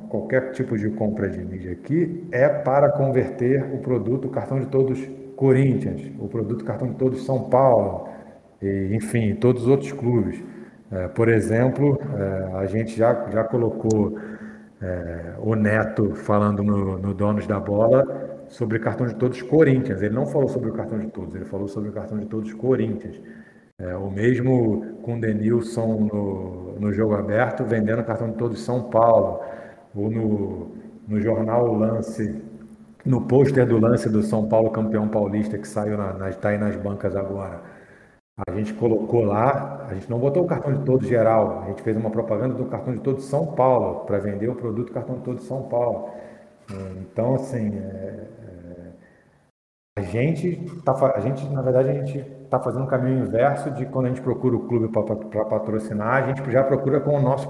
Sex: male